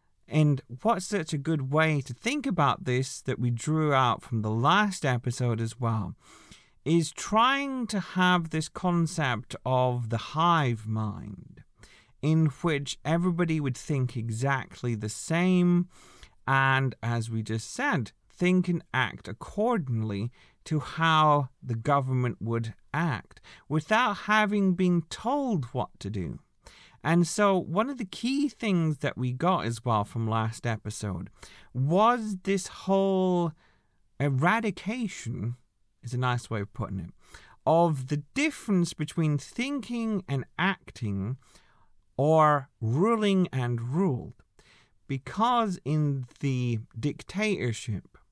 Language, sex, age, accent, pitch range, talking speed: English, male, 40-59, British, 115-180 Hz, 125 wpm